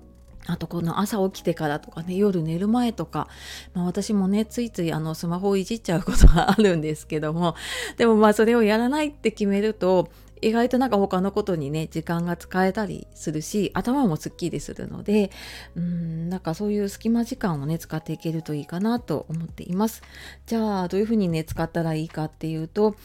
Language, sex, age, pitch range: Japanese, female, 30-49, 160-225 Hz